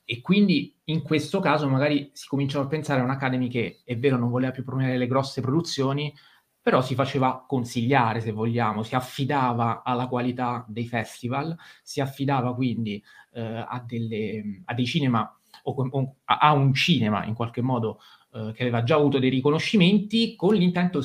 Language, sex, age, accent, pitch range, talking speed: Italian, male, 30-49, native, 115-140 Hz, 175 wpm